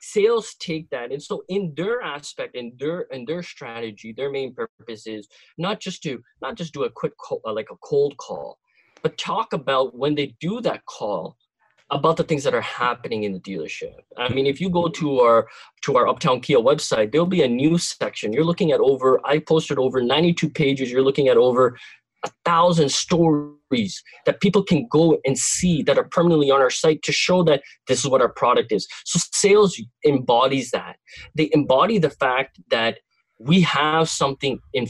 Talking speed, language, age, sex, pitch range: 195 wpm, English, 20-39, male, 130-195 Hz